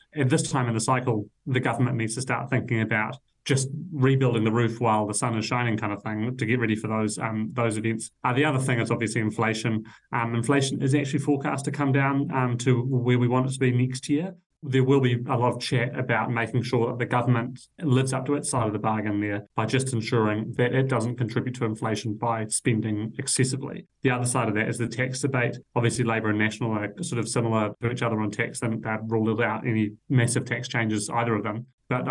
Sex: male